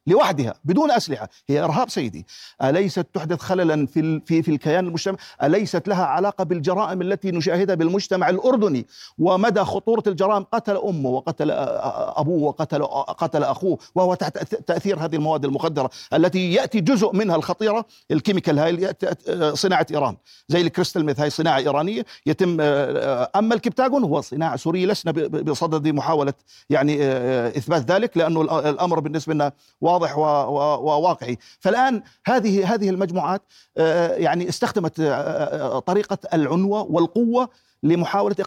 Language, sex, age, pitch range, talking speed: Arabic, male, 50-69, 155-200 Hz, 125 wpm